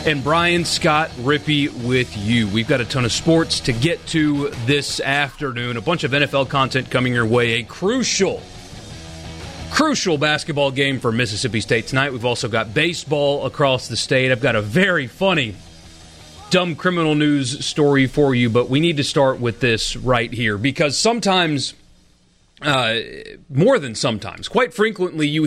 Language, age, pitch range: English, 30-49, 120-155 Hz